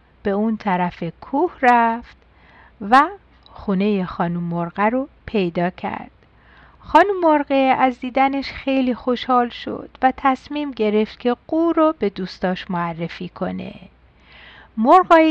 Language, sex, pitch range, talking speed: Persian, female, 200-275 Hz, 120 wpm